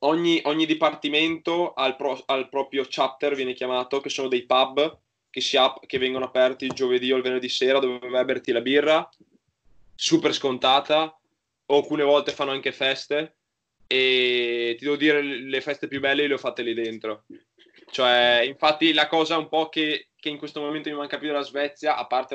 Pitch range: 125-150 Hz